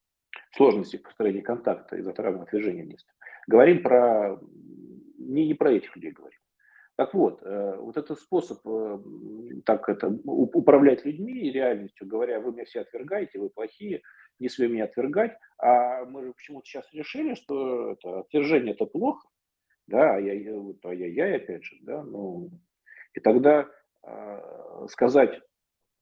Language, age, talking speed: Russian, 40-59, 145 wpm